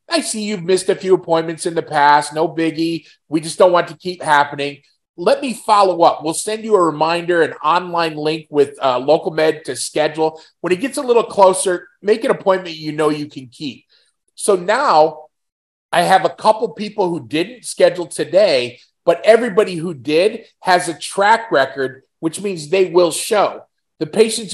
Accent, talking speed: American, 190 wpm